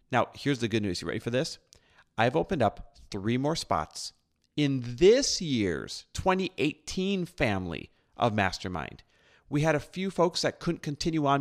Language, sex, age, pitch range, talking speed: English, male, 40-59, 105-140 Hz, 165 wpm